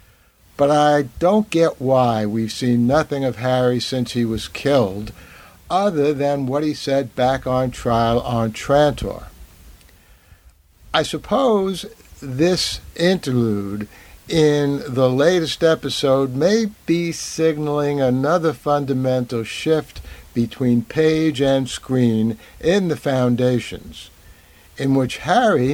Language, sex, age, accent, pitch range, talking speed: English, male, 60-79, American, 115-150 Hz, 110 wpm